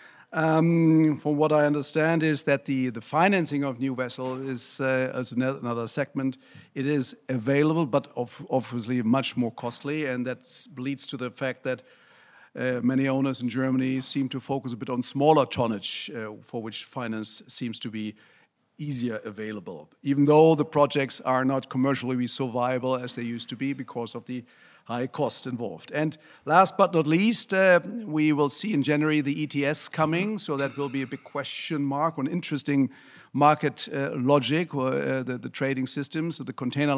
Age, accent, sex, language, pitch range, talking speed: 50-69, German, male, English, 130-150 Hz, 180 wpm